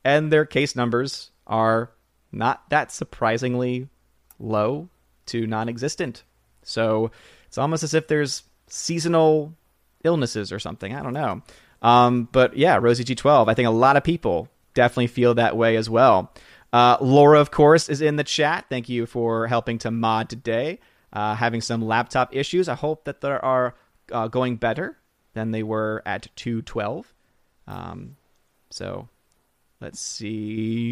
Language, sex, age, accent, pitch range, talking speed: English, male, 30-49, American, 115-145 Hz, 150 wpm